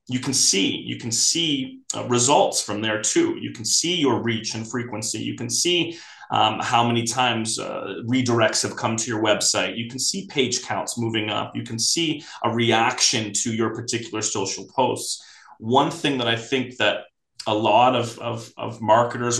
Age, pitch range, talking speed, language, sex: 30-49, 110-130 Hz, 185 wpm, English, male